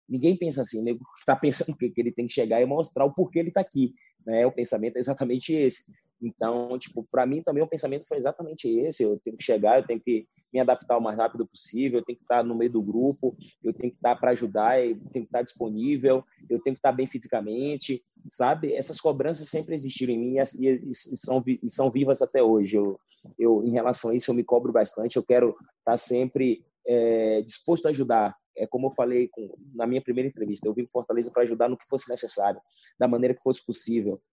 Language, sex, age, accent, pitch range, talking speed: English, male, 20-39, Brazilian, 120-140 Hz, 220 wpm